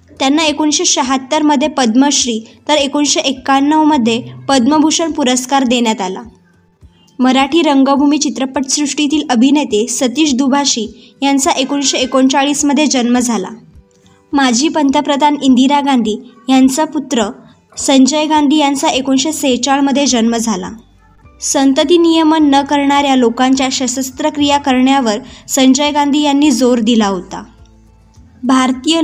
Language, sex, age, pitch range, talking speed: Marathi, male, 20-39, 245-285 Hz, 100 wpm